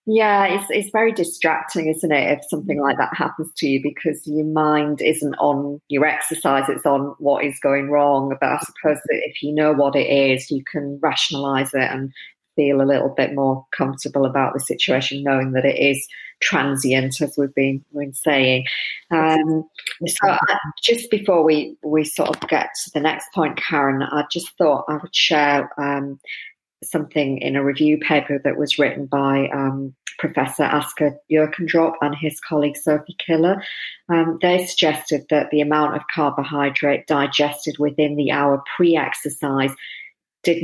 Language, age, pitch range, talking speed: English, 40-59, 140-155 Hz, 175 wpm